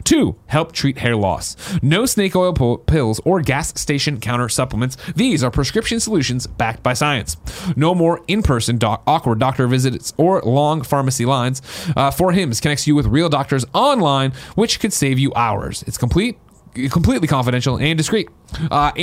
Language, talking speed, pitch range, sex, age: English, 165 wpm, 125-165 Hz, male, 30-49